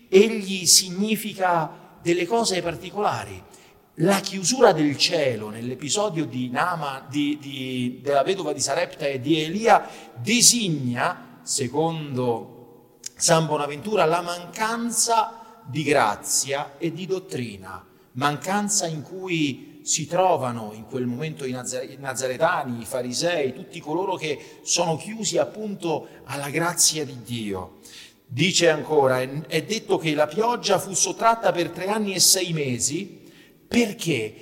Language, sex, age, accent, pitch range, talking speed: Italian, male, 50-69, native, 140-195 Hz, 115 wpm